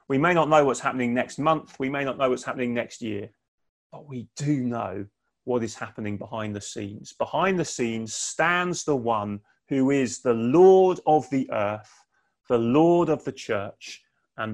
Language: English